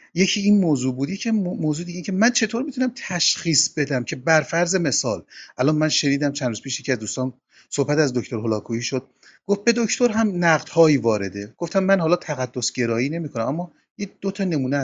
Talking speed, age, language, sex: 190 wpm, 30-49, Persian, male